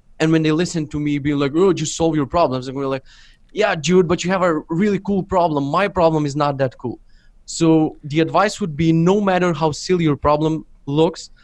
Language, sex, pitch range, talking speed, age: English, male, 140-165 Hz, 225 wpm, 20-39